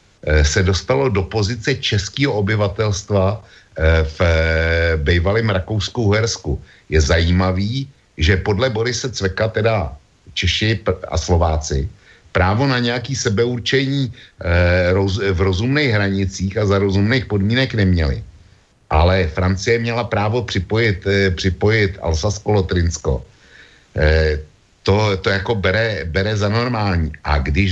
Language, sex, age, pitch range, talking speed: Slovak, male, 60-79, 80-105 Hz, 105 wpm